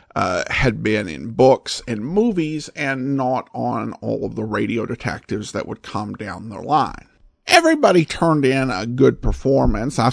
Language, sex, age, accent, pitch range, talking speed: English, male, 50-69, American, 125-195 Hz, 165 wpm